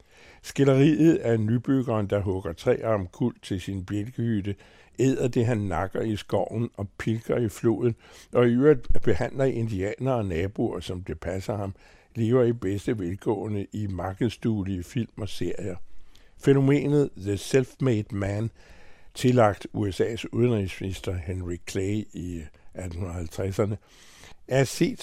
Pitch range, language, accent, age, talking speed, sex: 95-125 Hz, Danish, American, 60-79, 130 wpm, male